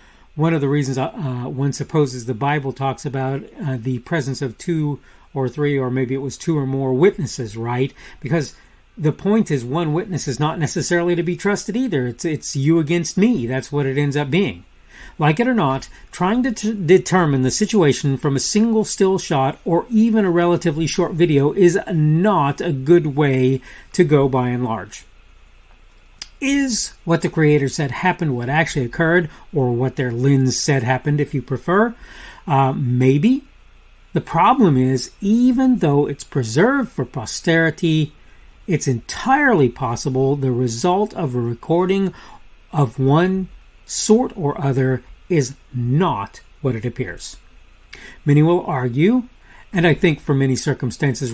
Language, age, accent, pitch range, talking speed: English, 40-59, American, 130-175 Hz, 160 wpm